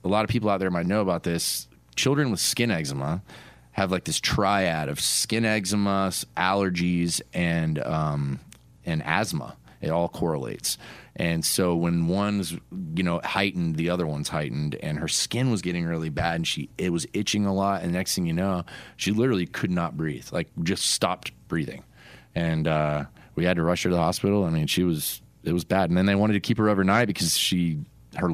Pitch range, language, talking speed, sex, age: 80-95 Hz, English, 210 wpm, male, 30-49